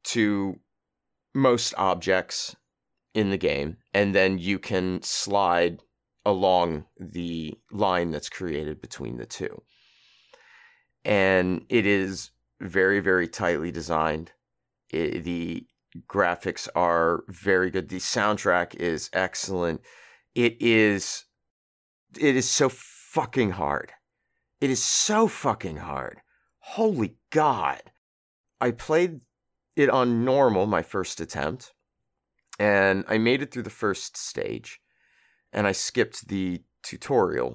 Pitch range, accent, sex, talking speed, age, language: 90-125 Hz, American, male, 115 wpm, 30-49, English